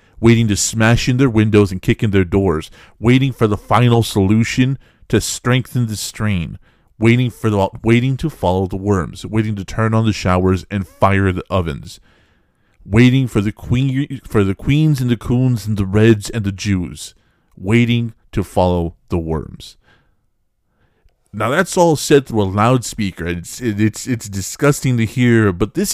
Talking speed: 170 wpm